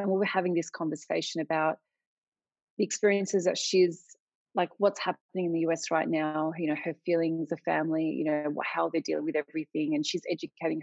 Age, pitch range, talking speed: 30-49, 160-205 Hz, 195 wpm